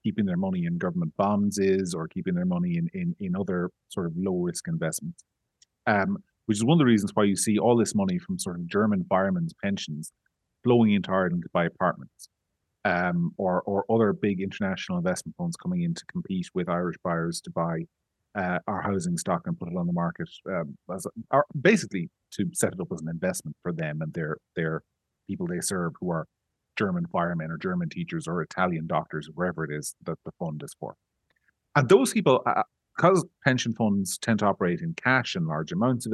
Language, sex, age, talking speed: English, male, 30-49, 210 wpm